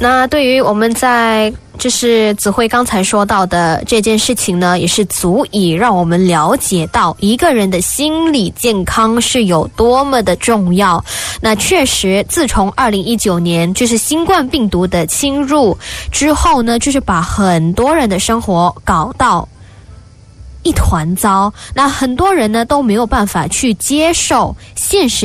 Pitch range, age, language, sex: 185-255 Hz, 10-29, Indonesian, female